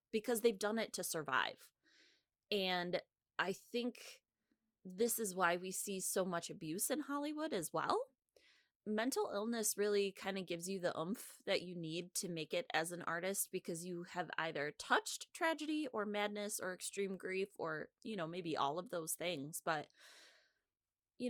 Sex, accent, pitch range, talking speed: female, American, 170-220 Hz, 170 wpm